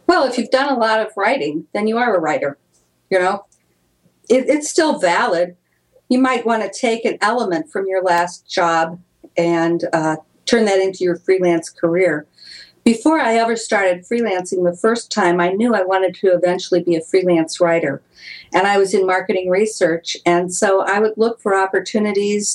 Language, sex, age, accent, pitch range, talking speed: English, female, 50-69, American, 175-220 Hz, 180 wpm